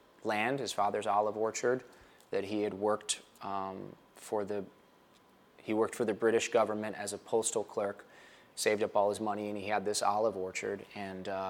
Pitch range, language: 95-110 Hz, English